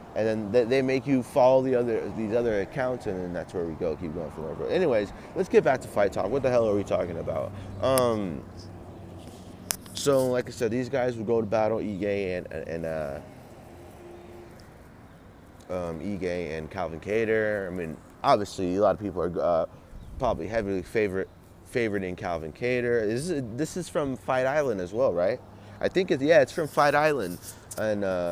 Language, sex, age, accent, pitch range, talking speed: English, male, 30-49, American, 90-120 Hz, 185 wpm